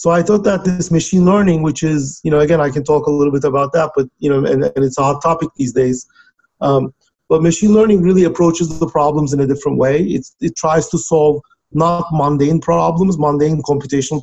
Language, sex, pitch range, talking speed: English, male, 140-170 Hz, 225 wpm